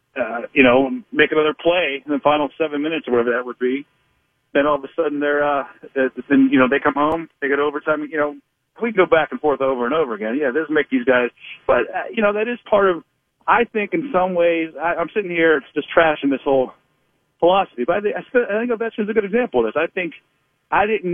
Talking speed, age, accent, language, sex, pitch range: 255 wpm, 40-59, American, English, male, 135-180 Hz